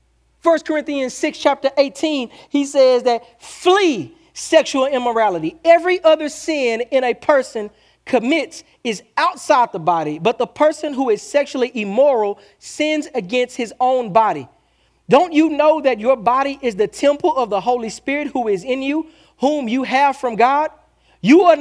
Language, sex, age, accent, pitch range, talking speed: English, male, 40-59, American, 235-295 Hz, 160 wpm